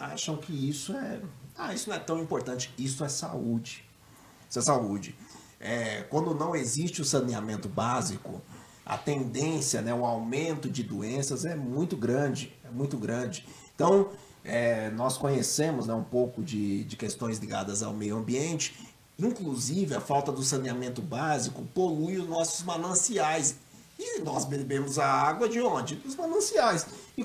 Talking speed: 155 wpm